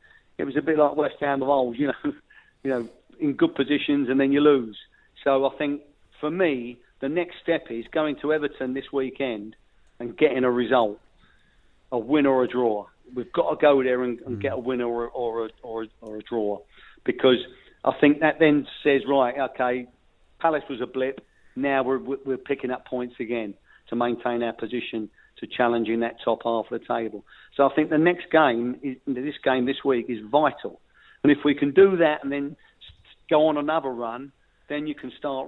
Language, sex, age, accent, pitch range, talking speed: English, male, 40-59, British, 120-145 Hz, 200 wpm